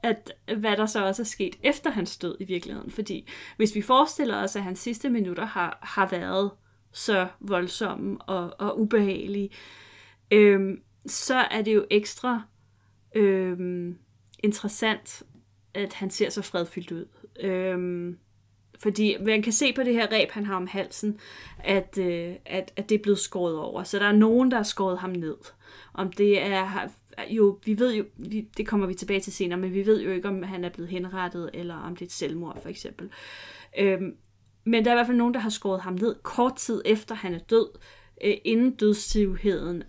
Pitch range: 180-220 Hz